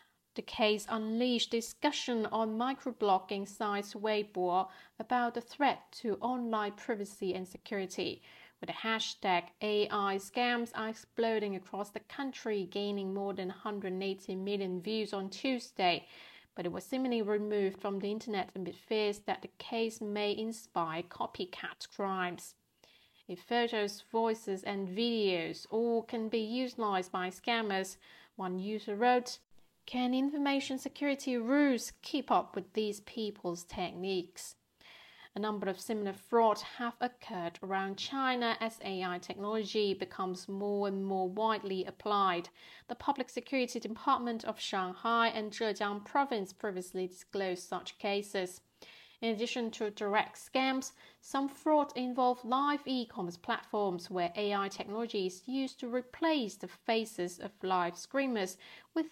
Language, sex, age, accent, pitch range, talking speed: English, female, 40-59, British, 195-235 Hz, 130 wpm